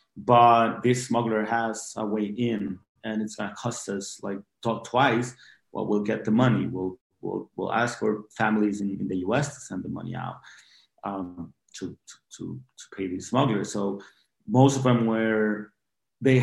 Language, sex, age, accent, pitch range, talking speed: English, male, 30-49, Mexican, 105-125 Hz, 185 wpm